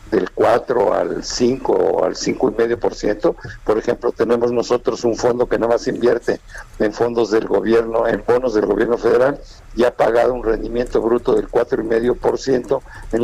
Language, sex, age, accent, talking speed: Spanish, male, 60-79, Mexican, 190 wpm